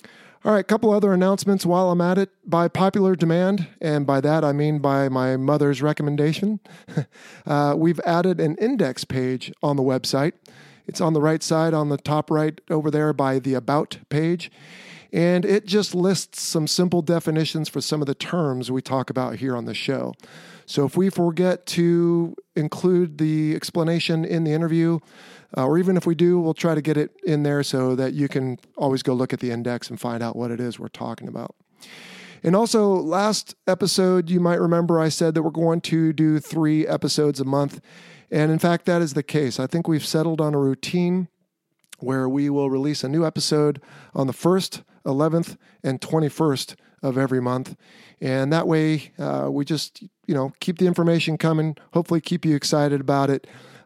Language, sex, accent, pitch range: English, male, American, 140-175 Hz